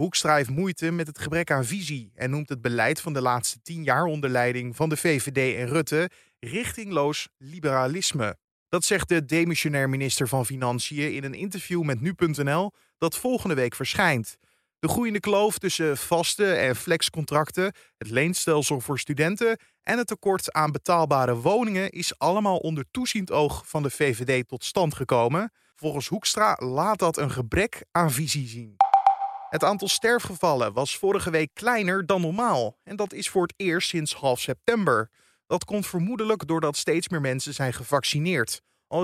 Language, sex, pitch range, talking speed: Dutch, male, 135-180 Hz, 165 wpm